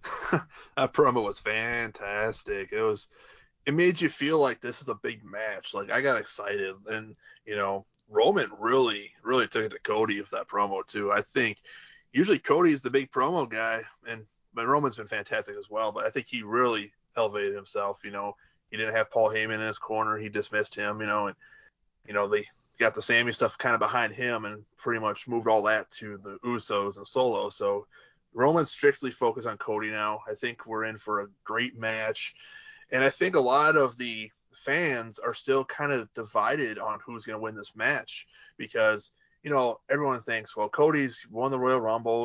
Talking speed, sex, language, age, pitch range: 200 wpm, male, English, 20-39, 105-135 Hz